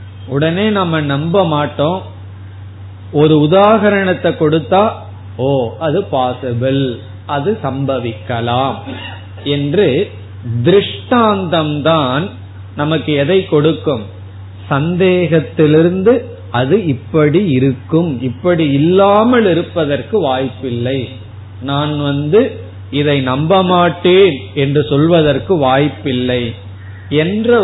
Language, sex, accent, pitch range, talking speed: Tamil, male, native, 110-170 Hz, 75 wpm